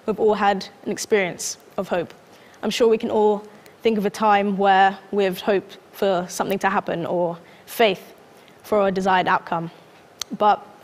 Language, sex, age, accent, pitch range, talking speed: English, female, 10-29, British, 195-220 Hz, 170 wpm